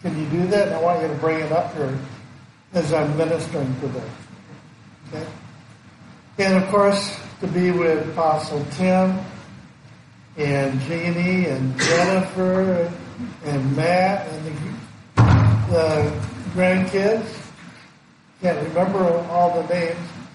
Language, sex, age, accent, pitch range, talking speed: English, male, 60-79, American, 155-195 Hz, 120 wpm